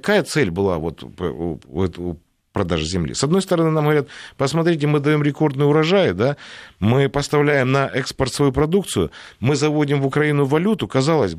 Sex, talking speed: male, 175 wpm